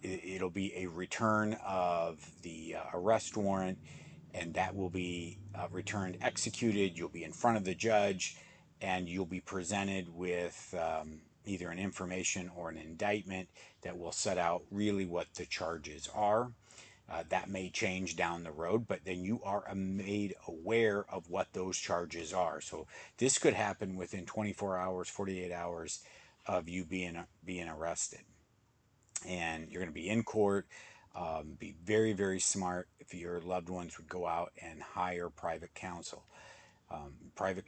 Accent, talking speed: American, 160 wpm